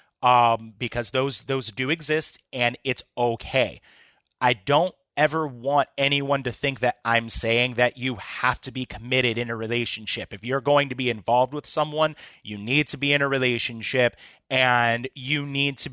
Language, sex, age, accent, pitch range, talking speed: English, male, 30-49, American, 120-145 Hz, 175 wpm